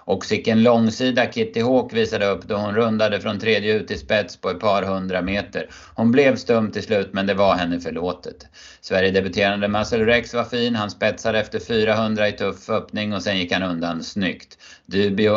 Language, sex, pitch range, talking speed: Swedish, male, 95-115 Hz, 195 wpm